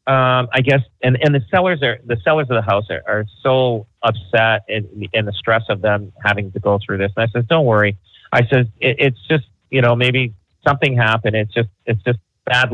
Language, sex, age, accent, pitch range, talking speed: English, male, 40-59, American, 105-130 Hz, 225 wpm